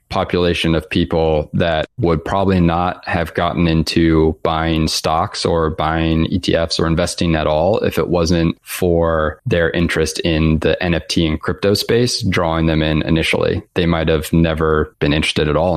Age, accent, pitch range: 20-39, American, 80-90 Hz